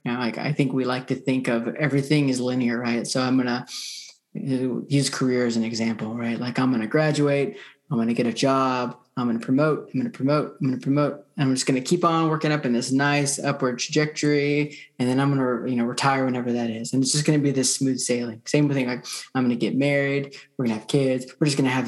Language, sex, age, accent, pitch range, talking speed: English, male, 20-39, American, 125-145 Hz, 235 wpm